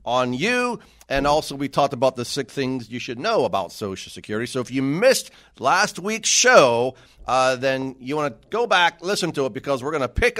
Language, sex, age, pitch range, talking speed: English, male, 40-59, 125-170 Hz, 220 wpm